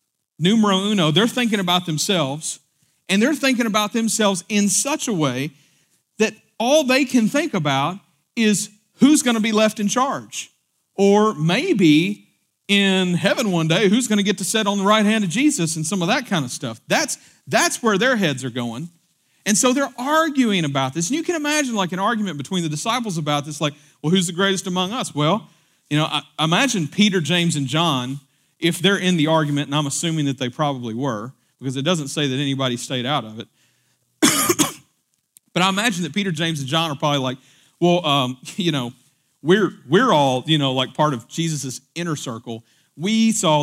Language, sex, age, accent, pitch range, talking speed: English, male, 40-59, American, 145-205 Hz, 200 wpm